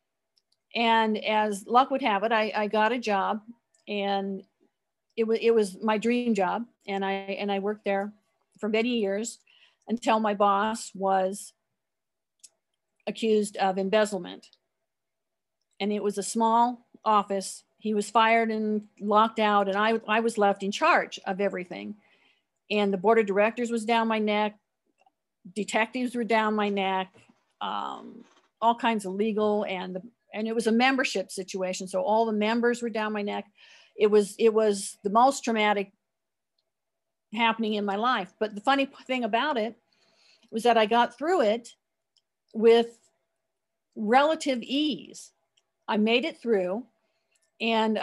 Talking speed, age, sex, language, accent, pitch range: 150 wpm, 50-69, female, English, American, 205-230 Hz